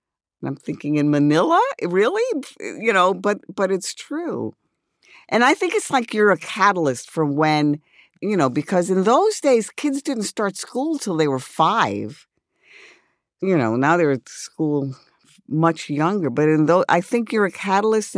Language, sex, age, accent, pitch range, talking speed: English, female, 50-69, American, 140-210 Hz, 170 wpm